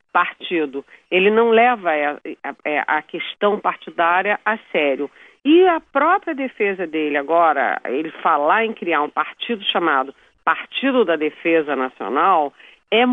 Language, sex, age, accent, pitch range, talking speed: Portuguese, female, 40-59, Brazilian, 170-260 Hz, 135 wpm